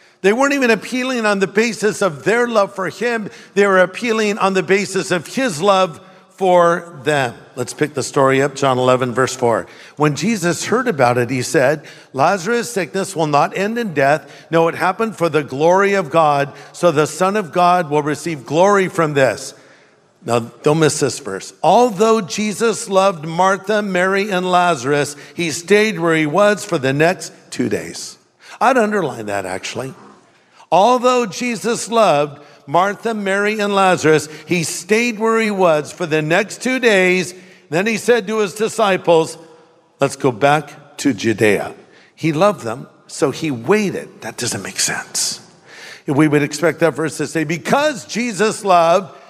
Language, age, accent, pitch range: English, 50-69, American, 155-215 Hz